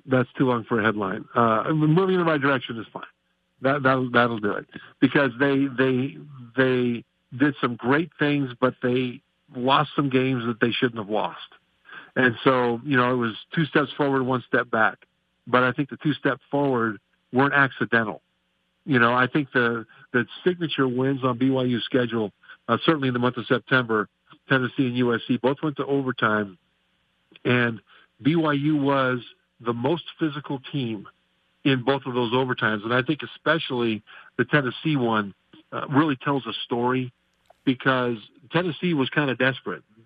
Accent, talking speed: American, 170 wpm